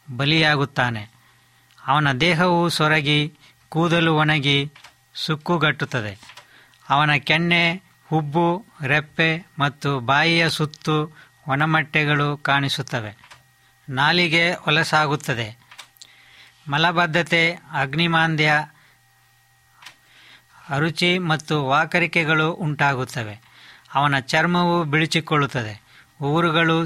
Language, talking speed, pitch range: Kannada, 65 wpm, 140-165 Hz